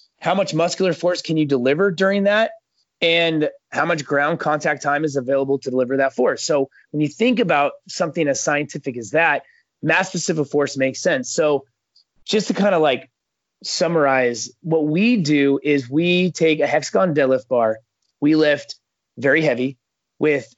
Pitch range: 135-170 Hz